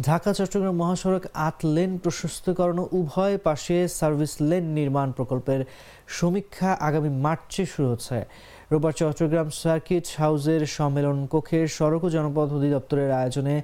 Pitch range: 135-165 Hz